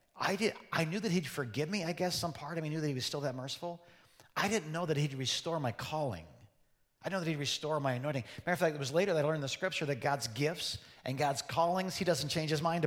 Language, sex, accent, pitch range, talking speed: English, male, American, 145-190 Hz, 280 wpm